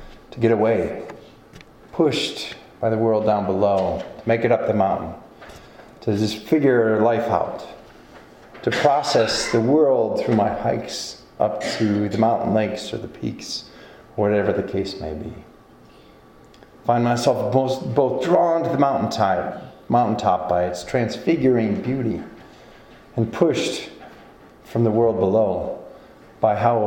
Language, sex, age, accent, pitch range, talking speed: English, male, 30-49, American, 110-130 Hz, 135 wpm